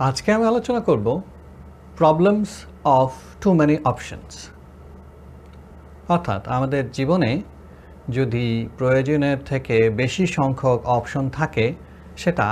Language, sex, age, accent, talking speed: Bengali, male, 50-69, native, 95 wpm